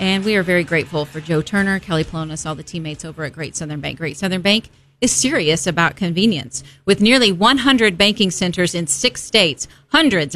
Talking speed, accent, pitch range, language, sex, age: 195 wpm, American, 175-225 Hz, English, female, 40-59